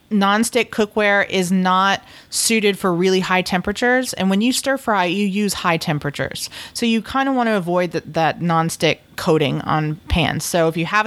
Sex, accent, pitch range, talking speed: female, American, 170-200 Hz, 190 wpm